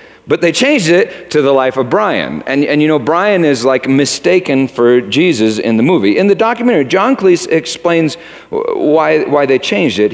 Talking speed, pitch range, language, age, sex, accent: 195 wpm, 150-225 Hz, English, 50-69, male, American